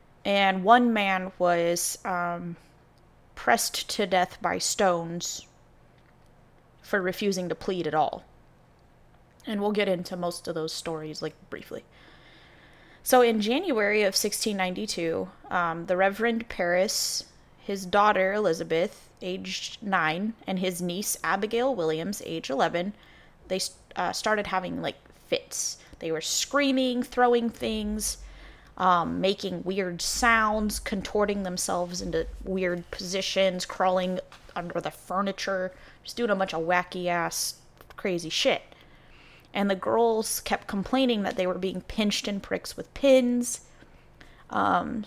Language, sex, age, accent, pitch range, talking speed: English, female, 20-39, American, 175-215 Hz, 125 wpm